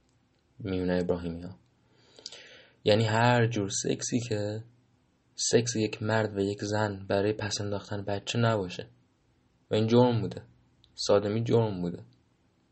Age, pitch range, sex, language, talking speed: 20-39, 100-120 Hz, male, Persian, 120 wpm